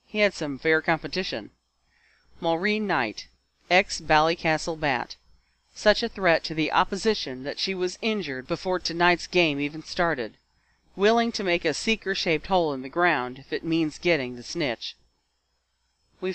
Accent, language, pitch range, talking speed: American, English, 140-185 Hz, 145 wpm